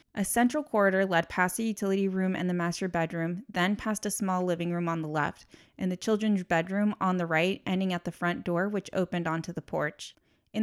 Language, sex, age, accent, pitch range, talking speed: English, female, 20-39, American, 175-205 Hz, 220 wpm